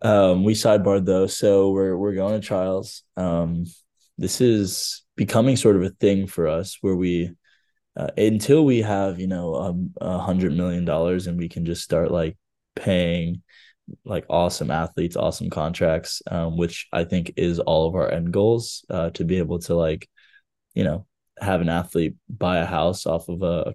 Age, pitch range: 20-39, 85-95 Hz